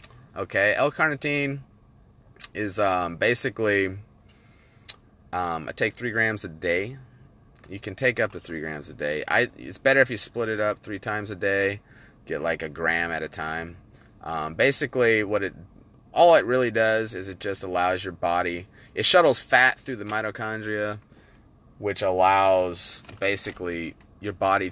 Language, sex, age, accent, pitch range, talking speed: English, male, 30-49, American, 95-130 Hz, 160 wpm